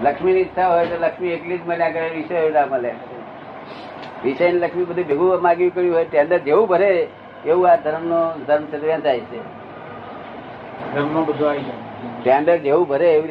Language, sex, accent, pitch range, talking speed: Gujarati, male, native, 150-180 Hz, 50 wpm